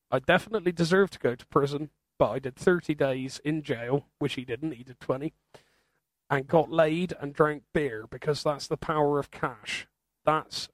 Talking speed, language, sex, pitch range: 185 wpm, English, male, 135-155 Hz